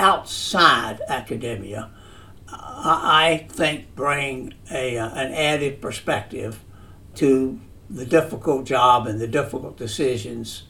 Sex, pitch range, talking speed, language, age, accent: male, 110-140 Hz, 100 wpm, English, 60-79, American